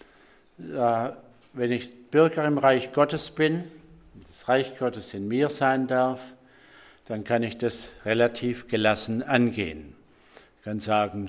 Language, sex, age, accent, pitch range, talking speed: English, male, 60-79, German, 115-135 Hz, 130 wpm